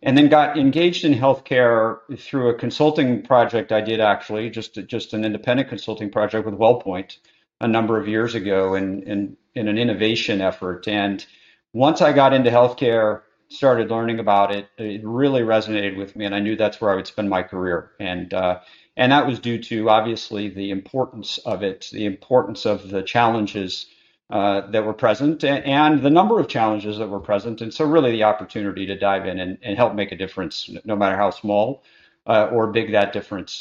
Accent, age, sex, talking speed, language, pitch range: American, 50-69, male, 195 wpm, English, 105-120 Hz